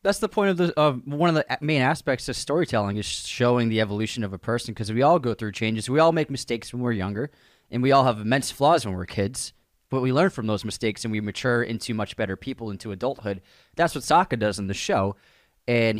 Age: 20-39